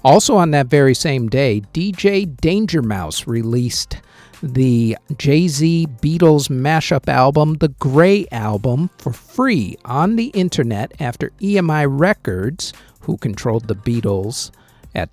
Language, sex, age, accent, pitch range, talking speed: English, male, 50-69, American, 110-165 Hz, 125 wpm